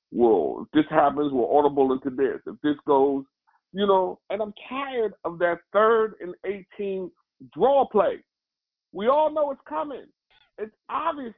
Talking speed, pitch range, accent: 160 wpm, 145-225 Hz, American